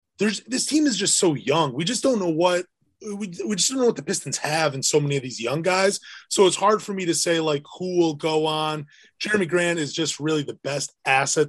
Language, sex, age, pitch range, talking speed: English, male, 20-39, 145-180 Hz, 250 wpm